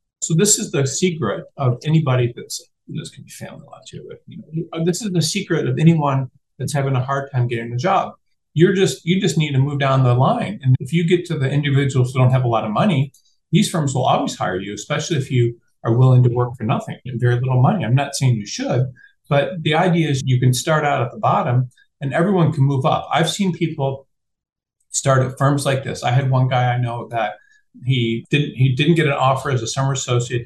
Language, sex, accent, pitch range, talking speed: English, male, American, 120-150 Hz, 240 wpm